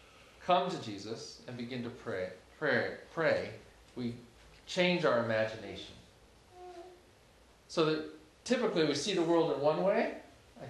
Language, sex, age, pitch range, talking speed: English, male, 40-59, 115-150 Hz, 135 wpm